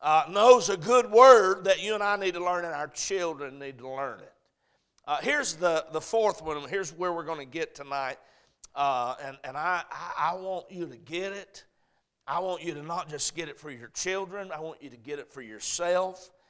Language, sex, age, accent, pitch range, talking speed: English, male, 50-69, American, 140-185 Hz, 220 wpm